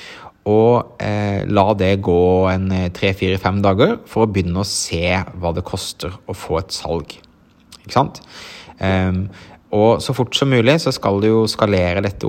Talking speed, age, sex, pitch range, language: 135 wpm, 30-49, male, 90-110 Hz, English